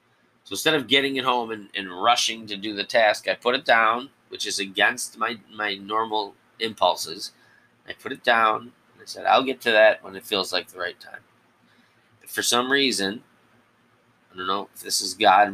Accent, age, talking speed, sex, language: American, 20-39, 205 wpm, male, English